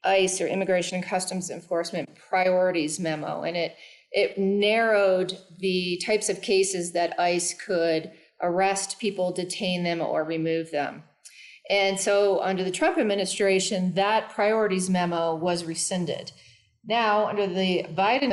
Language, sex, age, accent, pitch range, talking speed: English, female, 40-59, American, 170-200 Hz, 135 wpm